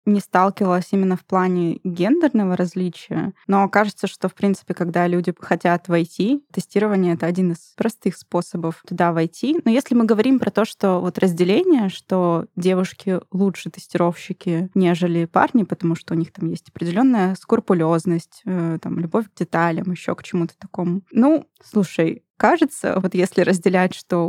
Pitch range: 175-215 Hz